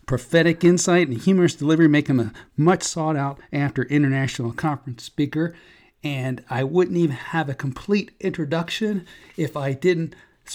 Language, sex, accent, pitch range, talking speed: English, male, American, 140-175 Hz, 150 wpm